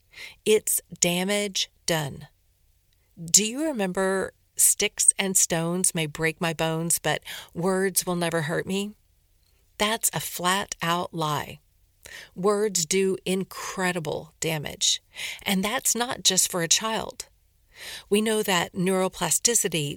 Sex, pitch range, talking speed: female, 160-200 Hz, 115 wpm